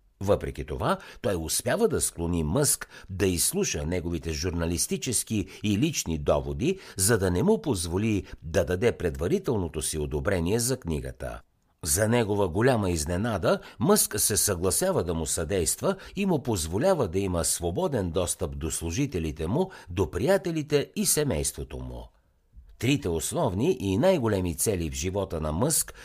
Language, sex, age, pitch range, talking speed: Bulgarian, male, 60-79, 85-120 Hz, 140 wpm